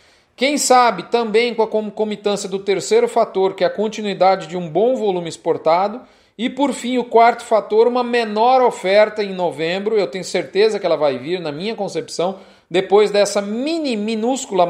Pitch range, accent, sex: 190-225 Hz, Brazilian, male